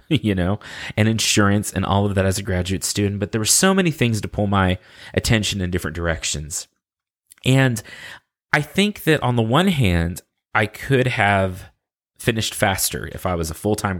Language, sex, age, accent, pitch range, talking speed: English, male, 30-49, American, 95-120 Hz, 185 wpm